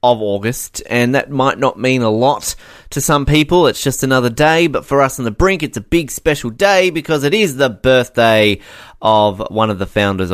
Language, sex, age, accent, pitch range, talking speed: English, male, 20-39, Australian, 95-130 Hz, 215 wpm